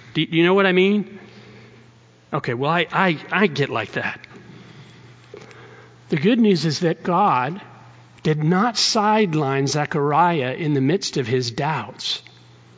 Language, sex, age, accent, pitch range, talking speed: English, male, 50-69, American, 135-195 Hz, 135 wpm